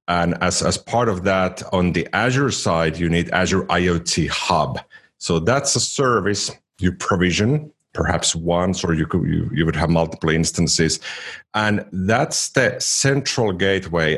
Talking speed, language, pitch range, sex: 155 wpm, English, 85-105 Hz, male